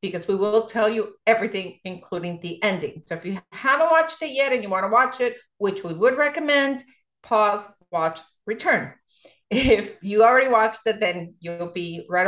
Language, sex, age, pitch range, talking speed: English, female, 40-59, 180-225 Hz, 185 wpm